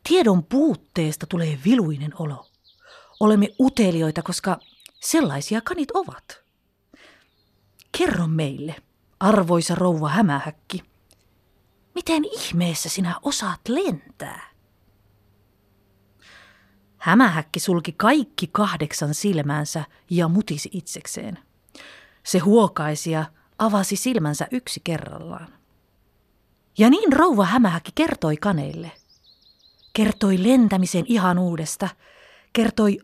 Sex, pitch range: female, 160-225 Hz